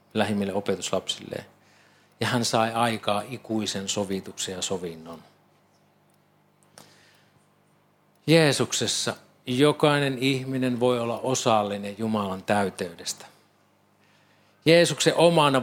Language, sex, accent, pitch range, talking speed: Finnish, male, native, 105-140 Hz, 75 wpm